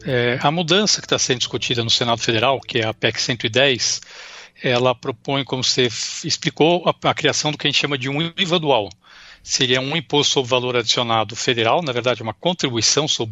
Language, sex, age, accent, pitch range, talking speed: Portuguese, male, 60-79, Brazilian, 125-155 Hz, 200 wpm